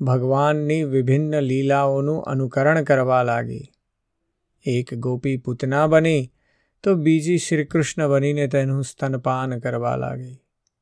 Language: Gujarati